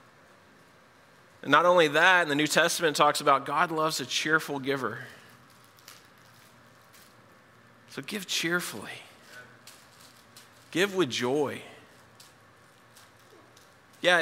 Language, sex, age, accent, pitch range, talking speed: English, male, 30-49, American, 135-165 Hz, 95 wpm